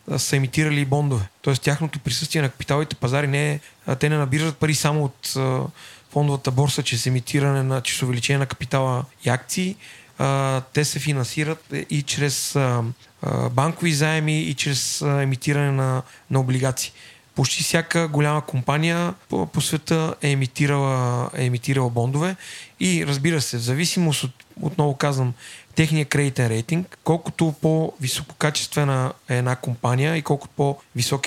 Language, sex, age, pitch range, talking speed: Bulgarian, male, 30-49, 130-155 Hz, 135 wpm